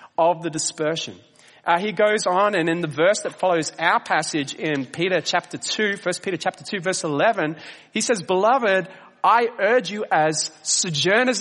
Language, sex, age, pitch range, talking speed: English, male, 30-49, 160-215 Hz, 175 wpm